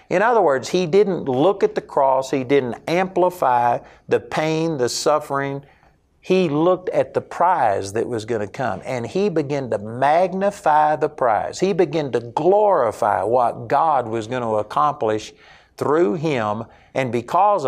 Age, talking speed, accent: 50-69, 160 wpm, American